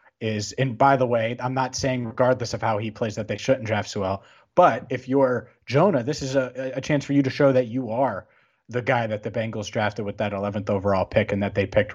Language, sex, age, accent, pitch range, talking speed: English, male, 30-49, American, 110-145 Hz, 245 wpm